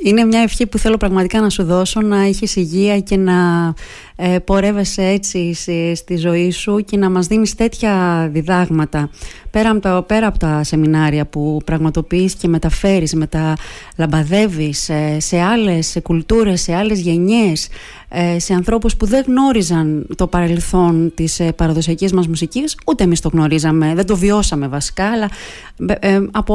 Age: 30-49